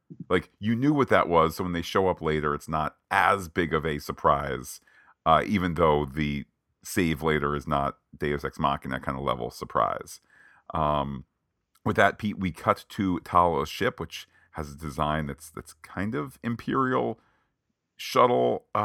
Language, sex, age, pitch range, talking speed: English, male, 40-59, 75-95 Hz, 170 wpm